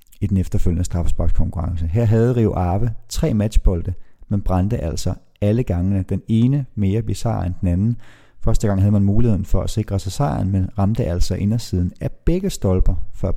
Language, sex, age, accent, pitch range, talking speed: Danish, male, 30-49, native, 90-110 Hz, 180 wpm